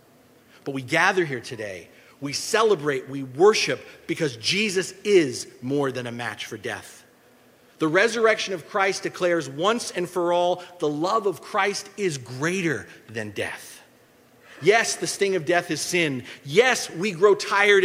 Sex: male